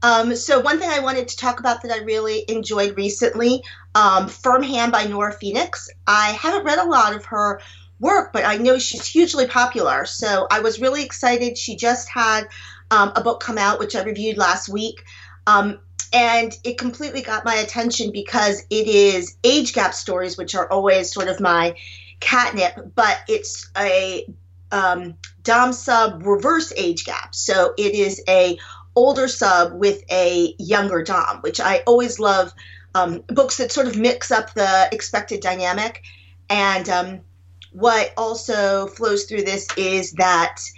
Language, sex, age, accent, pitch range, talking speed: English, female, 40-59, American, 175-235 Hz, 165 wpm